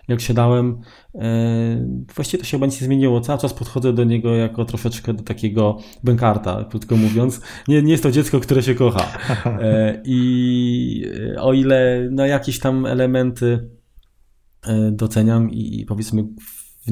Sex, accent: male, native